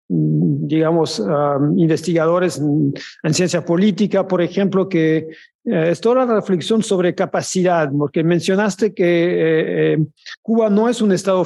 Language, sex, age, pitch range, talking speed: French, male, 50-69, 165-195 Hz, 140 wpm